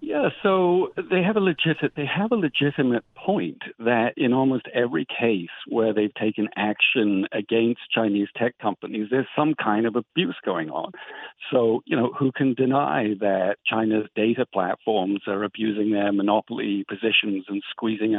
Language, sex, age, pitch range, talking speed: English, male, 50-69, 110-140 Hz, 165 wpm